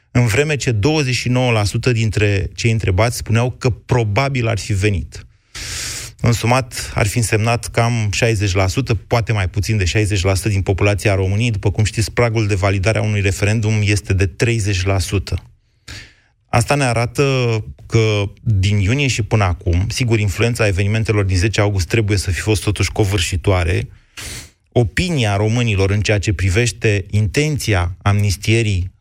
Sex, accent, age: male, native, 30-49